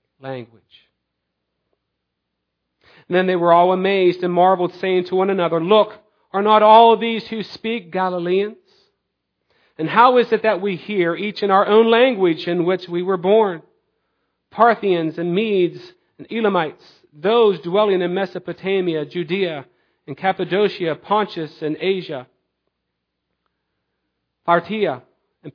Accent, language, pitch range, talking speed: American, English, 150-205 Hz, 130 wpm